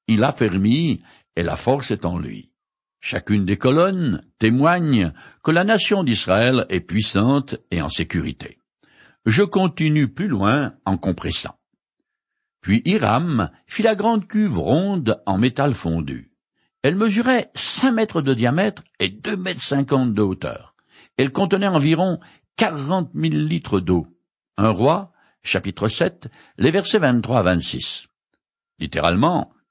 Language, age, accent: French, 60-79, French